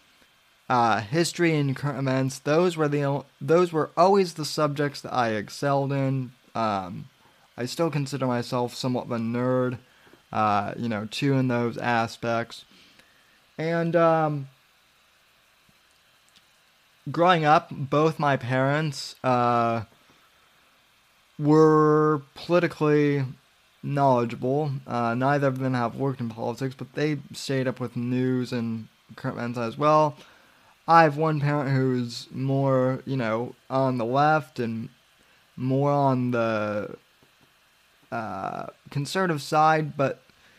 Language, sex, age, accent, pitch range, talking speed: English, male, 20-39, American, 120-150 Hz, 120 wpm